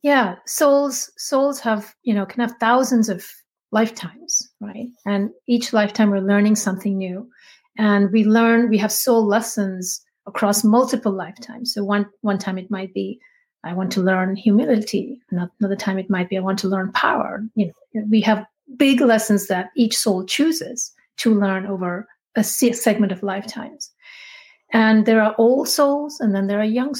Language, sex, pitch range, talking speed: English, female, 205-250 Hz, 175 wpm